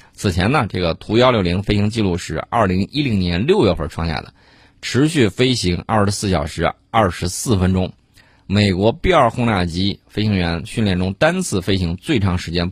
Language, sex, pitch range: Chinese, male, 90-110 Hz